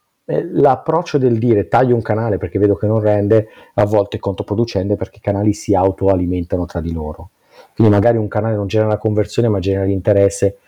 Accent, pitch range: Italian, 95-115 Hz